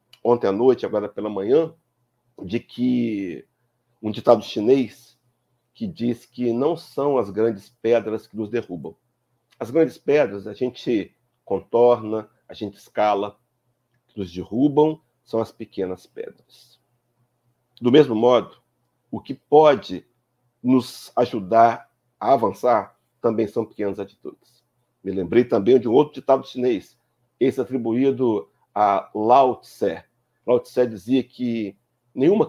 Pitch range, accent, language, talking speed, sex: 110-125 Hz, Brazilian, Portuguese, 130 wpm, male